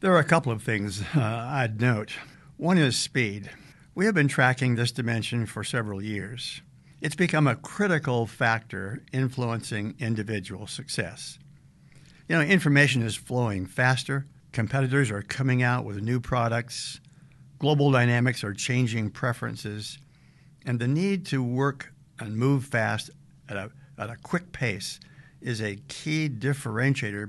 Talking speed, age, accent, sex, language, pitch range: 140 wpm, 60-79, American, male, English, 115-145 Hz